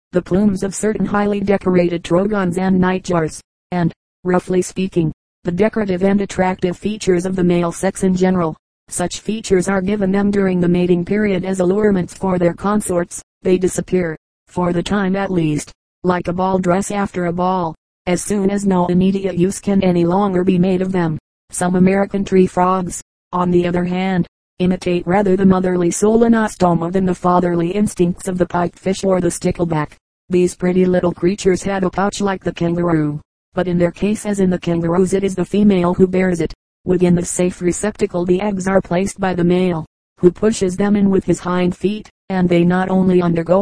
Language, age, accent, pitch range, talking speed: English, 40-59, American, 175-195 Hz, 190 wpm